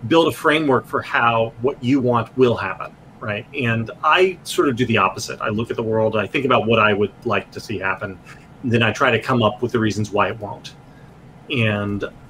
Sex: male